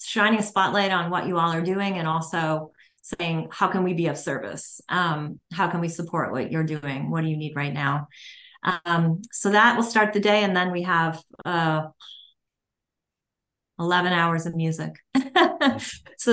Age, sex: 30-49, female